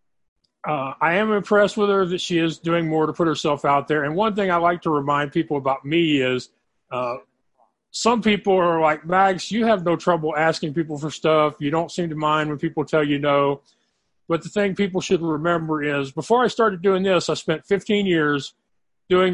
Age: 40-59